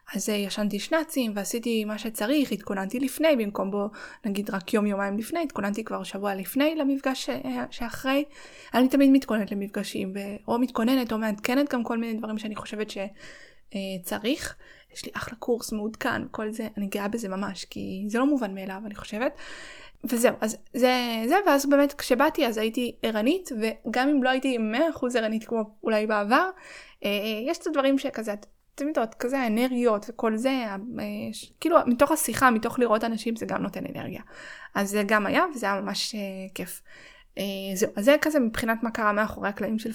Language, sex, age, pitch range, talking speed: Hebrew, female, 20-39, 210-265 Hz, 160 wpm